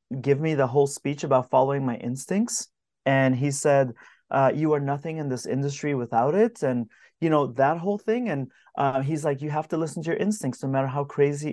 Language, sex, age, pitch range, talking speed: English, male, 30-49, 140-175 Hz, 220 wpm